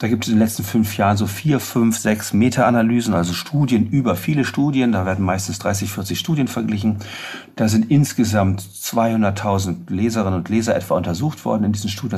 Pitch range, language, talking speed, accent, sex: 100-125 Hz, German, 185 wpm, German, male